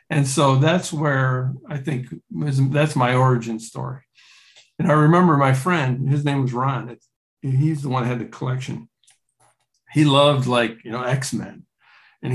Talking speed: 160 wpm